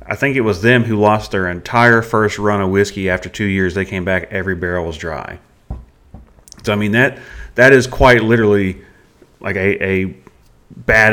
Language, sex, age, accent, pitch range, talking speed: English, male, 30-49, American, 95-110 Hz, 190 wpm